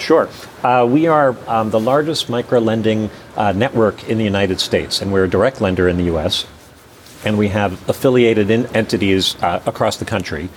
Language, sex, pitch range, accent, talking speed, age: English, male, 95-115 Hz, American, 180 wpm, 40-59